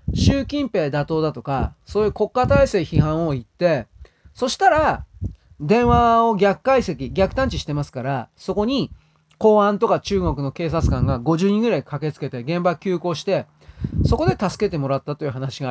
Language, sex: Japanese, male